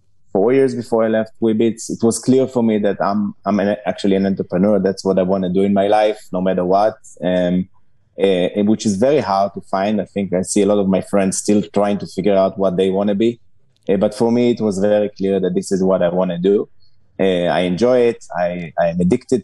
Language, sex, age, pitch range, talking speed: Hebrew, male, 20-39, 95-110 Hz, 245 wpm